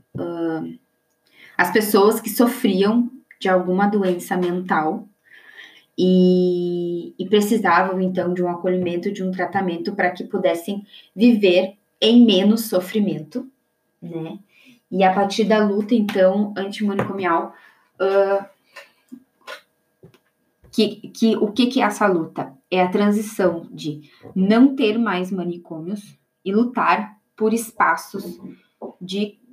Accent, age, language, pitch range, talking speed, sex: Brazilian, 20-39, Portuguese, 175-220 Hz, 105 wpm, female